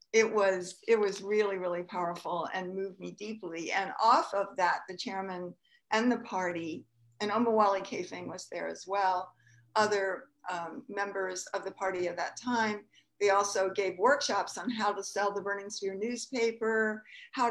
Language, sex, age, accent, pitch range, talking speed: English, female, 60-79, American, 195-235 Hz, 170 wpm